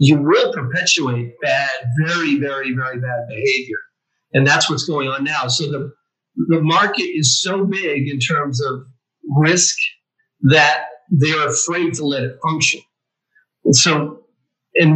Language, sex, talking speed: English, male, 140 wpm